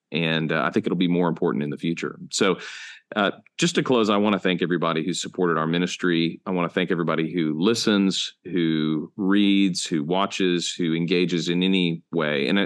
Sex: male